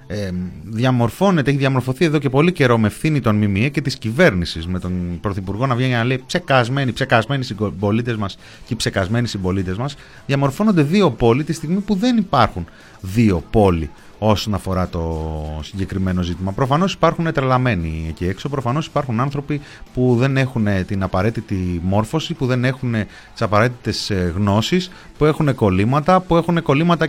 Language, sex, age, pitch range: Greek, male, 30-49, 100-140 Hz